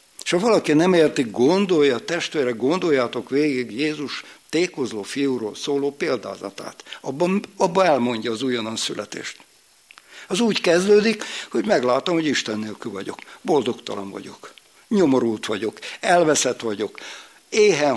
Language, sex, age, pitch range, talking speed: Hungarian, male, 60-79, 120-180 Hz, 125 wpm